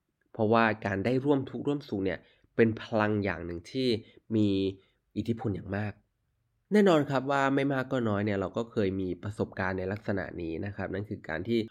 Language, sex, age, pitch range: Thai, male, 20-39, 100-130 Hz